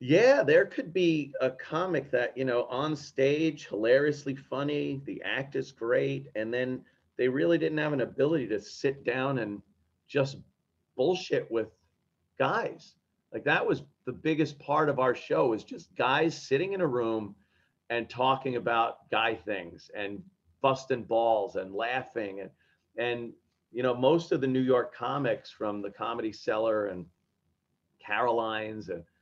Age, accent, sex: 40-59, American, male